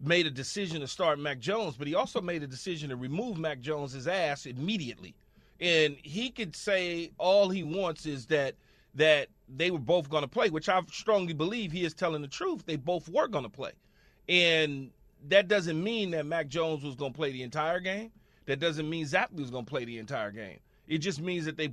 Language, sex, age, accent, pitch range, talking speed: English, male, 40-59, American, 150-200 Hz, 220 wpm